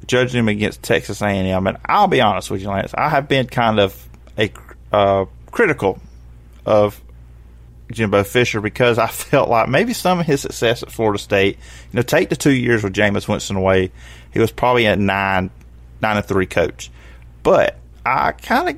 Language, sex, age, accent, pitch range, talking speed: English, male, 30-49, American, 95-120 Hz, 180 wpm